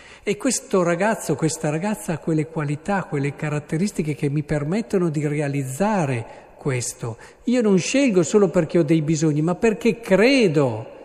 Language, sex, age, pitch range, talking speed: Italian, male, 40-59, 125-170 Hz, 145 wpm